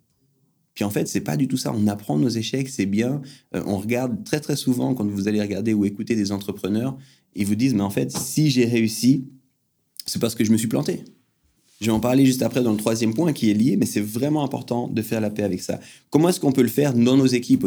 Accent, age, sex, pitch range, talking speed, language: French, 30-49, male, 105-135 Hz, 255 wpm, French